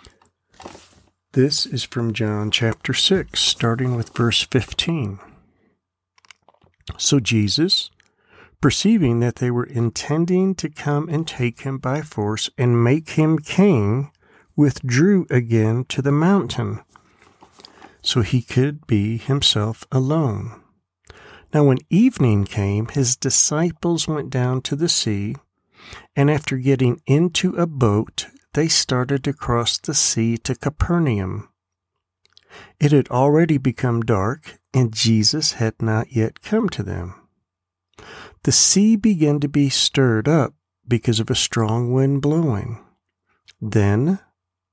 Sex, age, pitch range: male, 50-69, 110-150 Hz